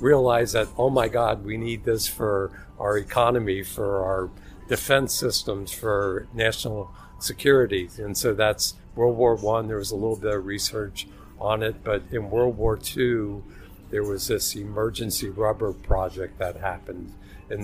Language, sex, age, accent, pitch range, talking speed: English, male, 50-69, American, 95-110 Hz, 160 wpm